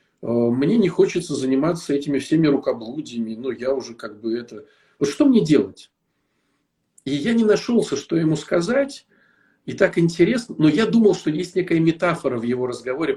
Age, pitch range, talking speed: 40-59, 140-190 Hz, 170 wpm